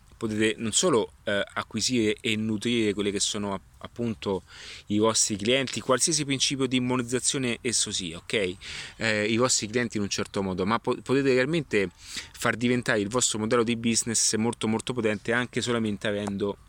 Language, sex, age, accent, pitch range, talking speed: Italian, male, 30-49, native, 100-120 Hz, 170 wpm